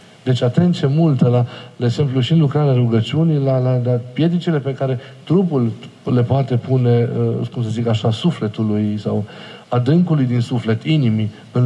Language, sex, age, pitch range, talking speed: Romanian, male, 40-59, 115-155 Hz, 160 wpm